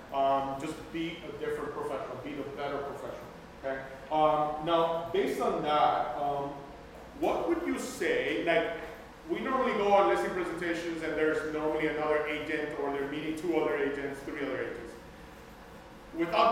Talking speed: 155 wpm